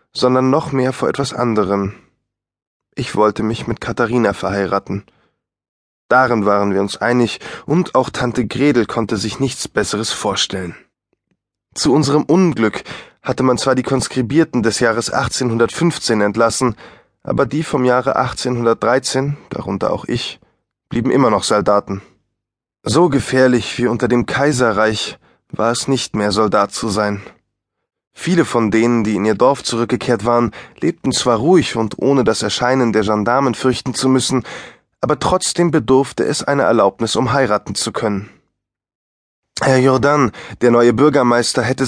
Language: German